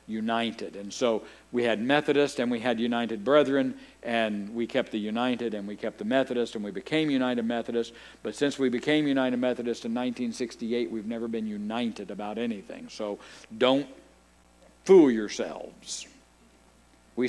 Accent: American